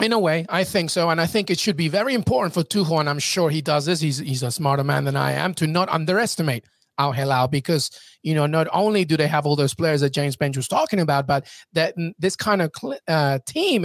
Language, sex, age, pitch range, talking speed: English, male, 30-49, 140-180 Hz, 250 wpm